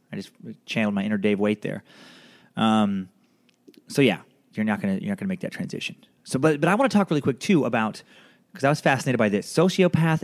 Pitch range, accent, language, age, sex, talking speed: 110-165 Hz, American, English, 30-49, male, 225 wpm